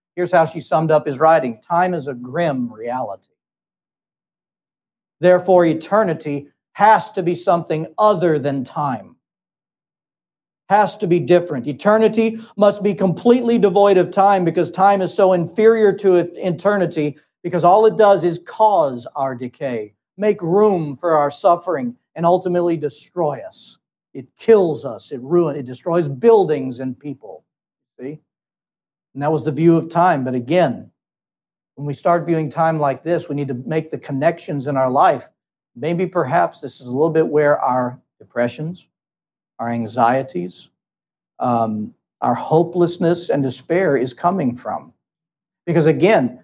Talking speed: 150 wpm